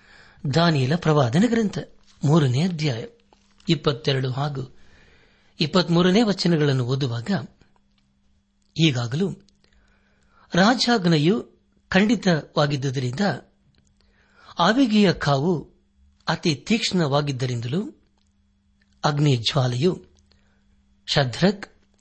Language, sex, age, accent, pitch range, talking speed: Kannada, male, 60-79, native, 115-170 Hz, 45 wpm